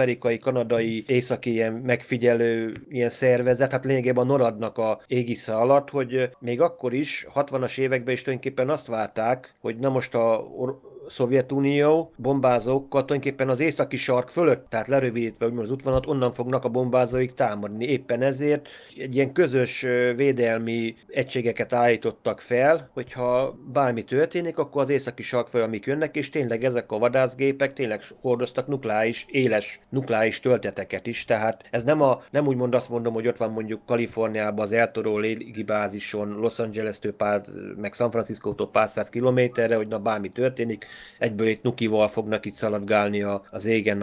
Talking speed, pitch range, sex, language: 155 wpm, 115-135 Hz, male, Hungarian